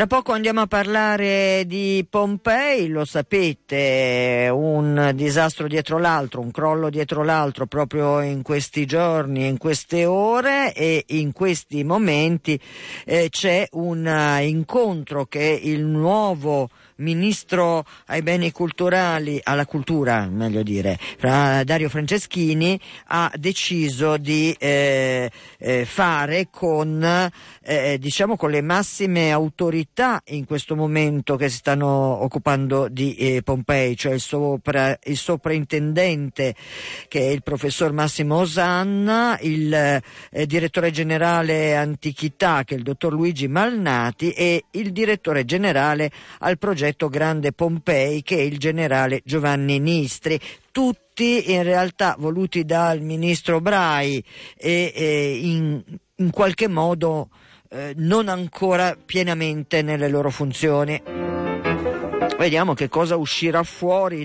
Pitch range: 140-175 Hz